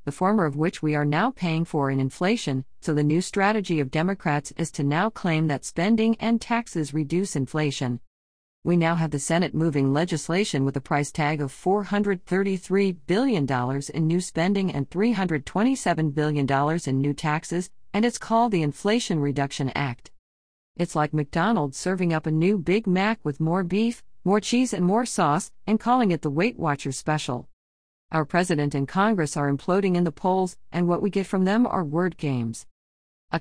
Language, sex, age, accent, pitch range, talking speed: English, female, 40-59, American, 145-190 Hz, 180 wpm